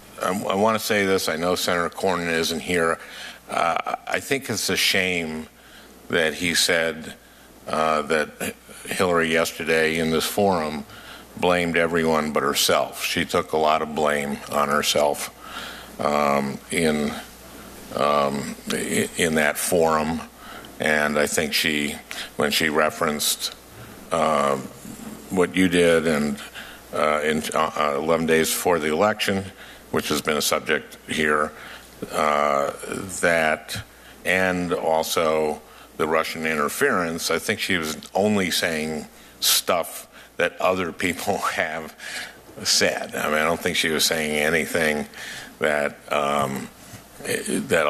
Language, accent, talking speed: English, American, 130 wpm